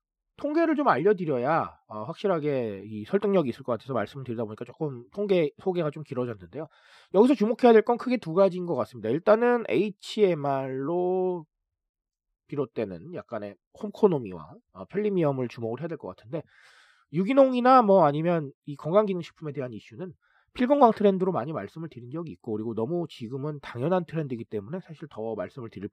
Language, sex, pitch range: Korean, male, 120-195 Hz